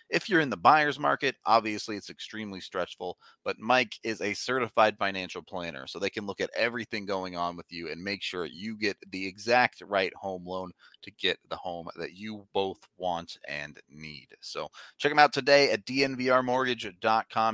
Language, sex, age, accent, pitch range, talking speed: English, male, 30-49, American, 95-120 Hz, 185 wpm